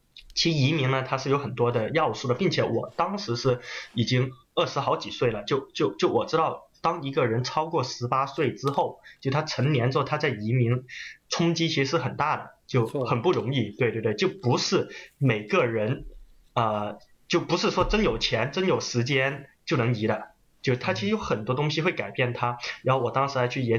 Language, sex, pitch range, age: Chinese, male, 120-140 Hz, 20-39